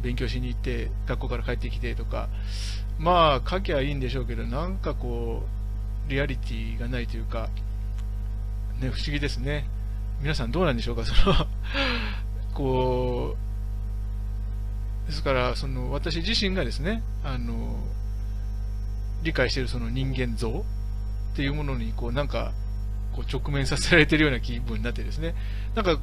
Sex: male